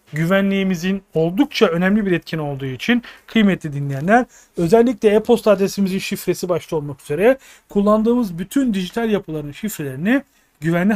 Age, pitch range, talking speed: 40-59, 155-215 Hz, 120 wpm